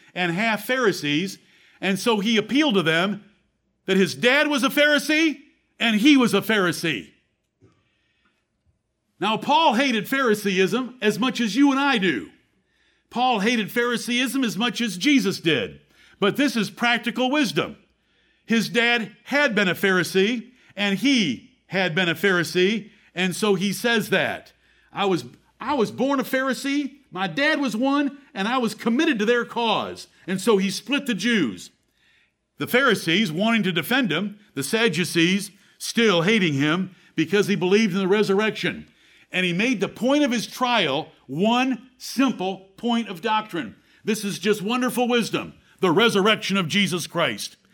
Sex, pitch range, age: male, 185-240 Hz, 50-69